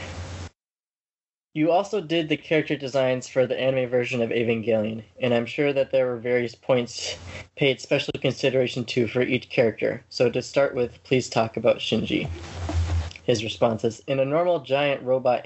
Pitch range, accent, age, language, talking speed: 110-130 Hz, American, 20-39, English, 165 wpm